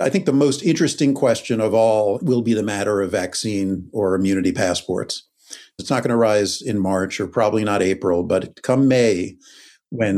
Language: English